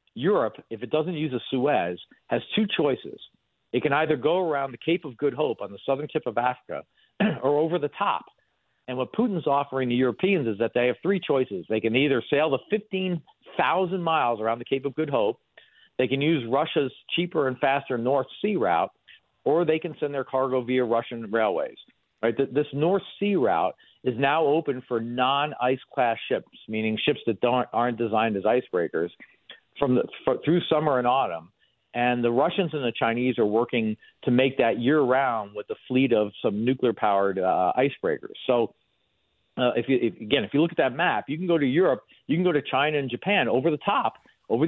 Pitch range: 120-160 Hz